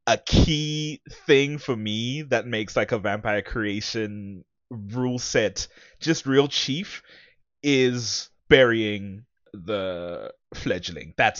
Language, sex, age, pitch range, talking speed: English, male, 20-39, 105-130 Hz, 110 wpm